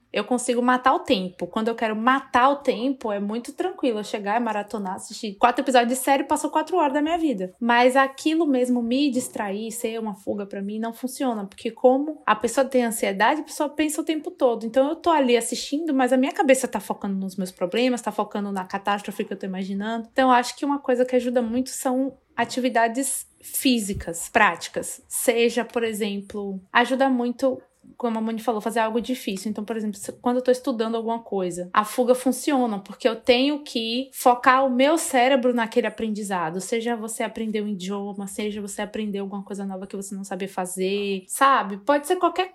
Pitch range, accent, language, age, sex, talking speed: 210-260 Hz, Brazilian, Portuguese, 20-39, female, 200 wpm